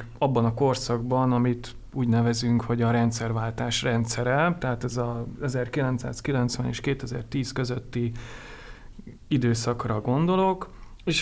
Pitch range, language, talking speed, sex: 115-135 Hz, Hungarian, 105 wpm, male